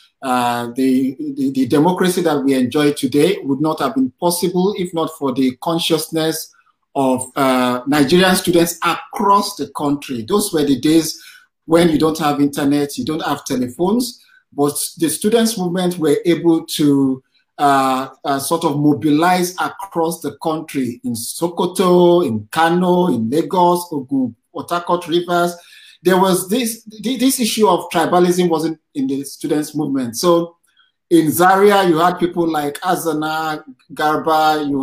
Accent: Nigerian